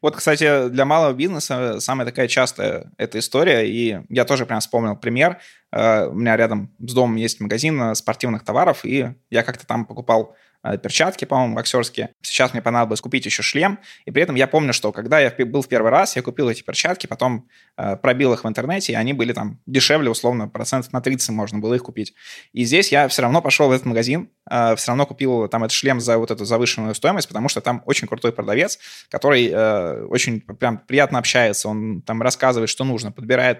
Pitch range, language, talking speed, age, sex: 115-135 Hz, Russian, 195 wpm, 20-39, male